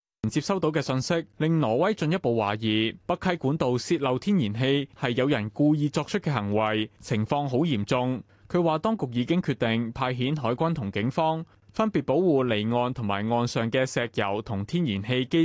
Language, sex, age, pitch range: Chinese, male, 20-39, 115-160 Hz